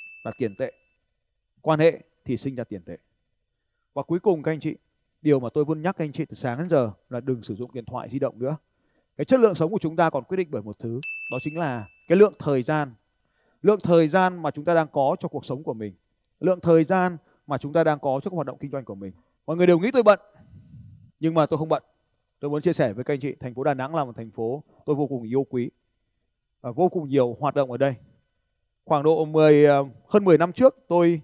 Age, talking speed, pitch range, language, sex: 20-39, 255 wpm, 125-170 Hz, Vietnamese, male